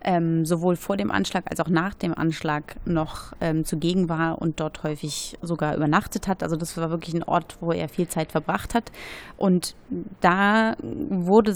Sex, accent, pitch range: female, German, 170-205 Hz